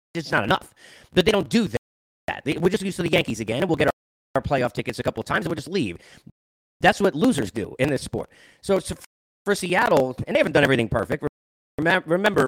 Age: 30-49